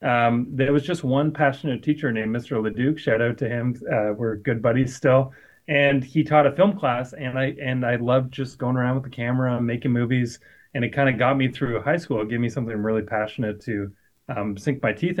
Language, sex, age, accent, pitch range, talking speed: English, male, 30-49, American, 115-135 Hz, 235 wpm